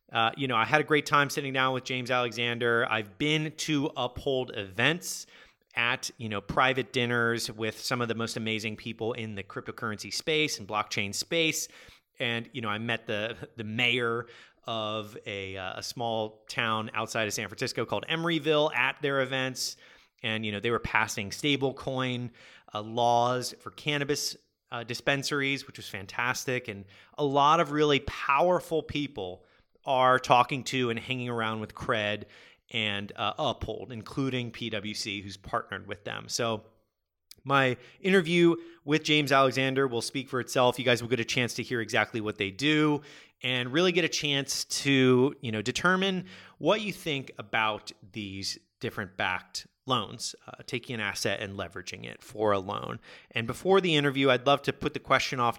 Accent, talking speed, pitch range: American, 175 wpm, 110-140 Hz